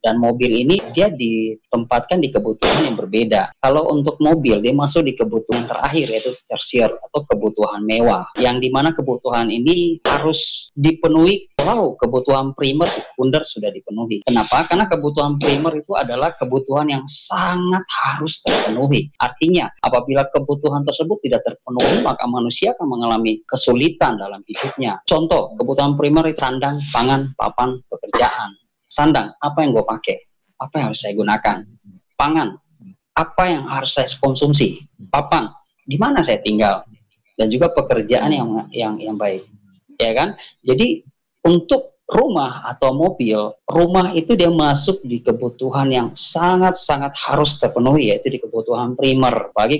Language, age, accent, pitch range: Indonesian, 20-39, native, 115-155 Hz